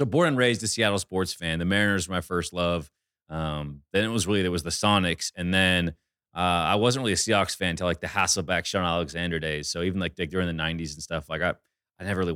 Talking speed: 255 wpm